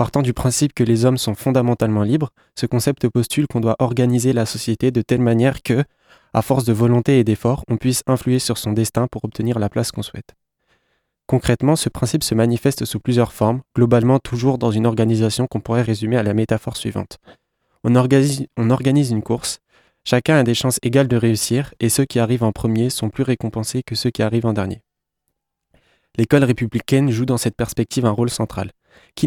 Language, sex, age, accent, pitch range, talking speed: French, male, 20-39, French, 110-130 Hz, 195 wpm